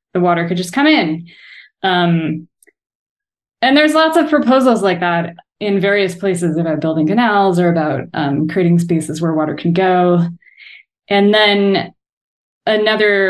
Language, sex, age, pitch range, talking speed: English, female, 20-39, 160-195 Hz, 145 wpm